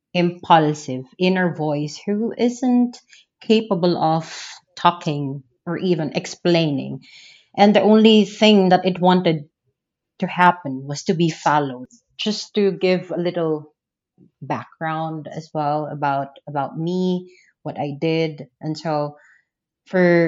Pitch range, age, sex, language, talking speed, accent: 150-180 Hz, 20-39, female, English, 120 wpm, Filipino